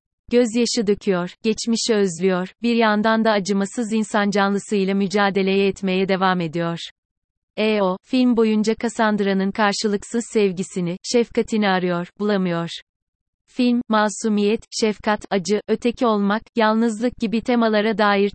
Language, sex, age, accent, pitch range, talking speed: Turkish, female, 30-49, native, 190-225 Hz, 110 wpm